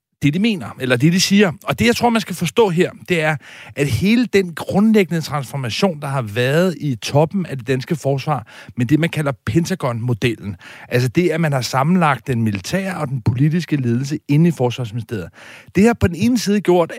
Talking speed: 205 wpm